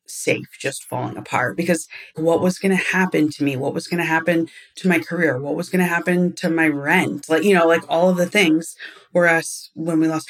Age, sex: 30-49, female